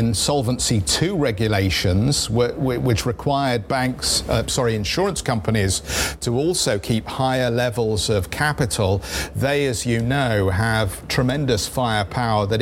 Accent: British